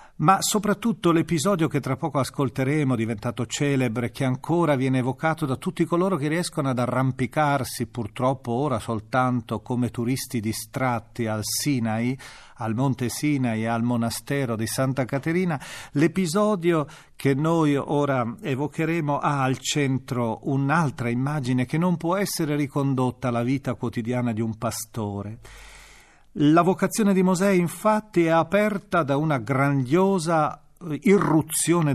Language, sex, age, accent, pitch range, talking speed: Italian, male, 40-59, native, 120-165 Hz, 130 wpm